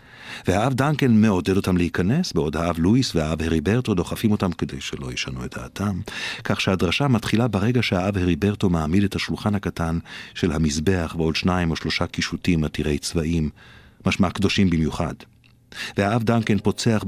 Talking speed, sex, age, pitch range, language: 150 wpm, male, 50-69, 85-105 Hz, Hebrew